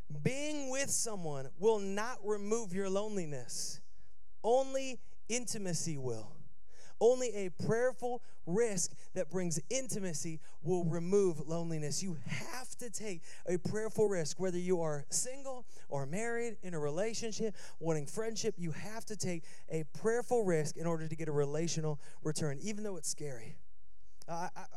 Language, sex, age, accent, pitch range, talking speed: English, male, 30-49, American, 160-215 Hz, 145 wpm